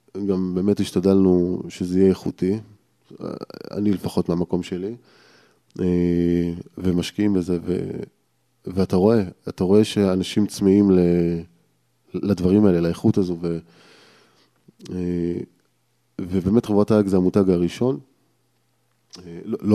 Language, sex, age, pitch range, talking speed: Hebrew, male, 20-39, 90-105 Hz, 95 wpm